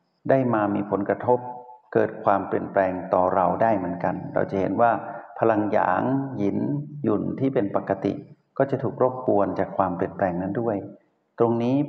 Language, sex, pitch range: Thai, male, 100-130 Hz